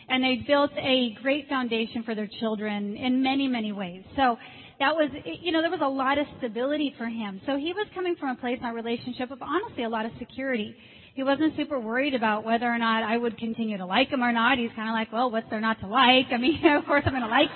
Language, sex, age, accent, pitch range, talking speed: English, female, 40-59, American, 230-275 Hz, 260 wpm